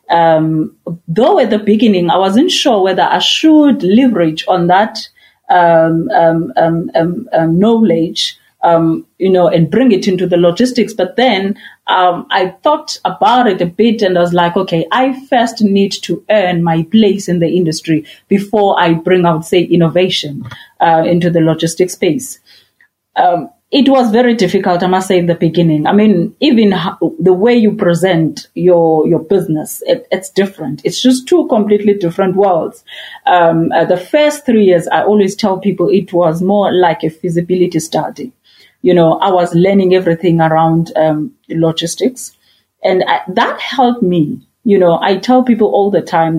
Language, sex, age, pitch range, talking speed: English, female, 30-49, 170-215 Hz, 175 wpm